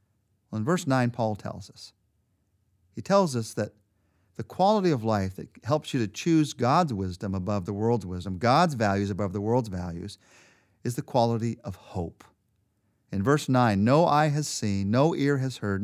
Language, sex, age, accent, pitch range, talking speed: English, male, 50-69, American, 105-145 Hz, 180 wpm